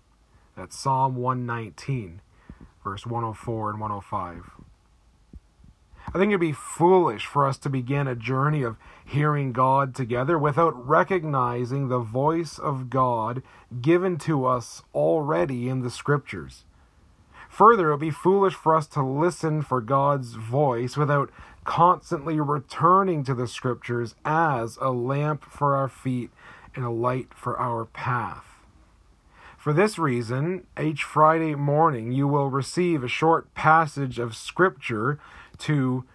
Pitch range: 115-150 Hz